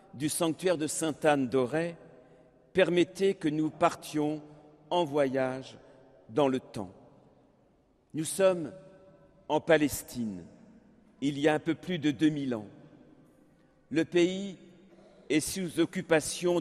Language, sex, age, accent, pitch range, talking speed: French, male, 60-79, French, 135-170 Hz, 110 wpm